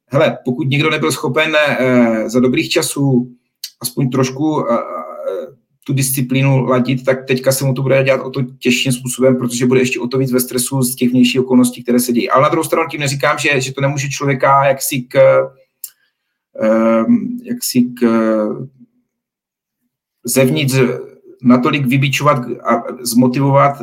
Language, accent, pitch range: Czech, native, 125-140 Hz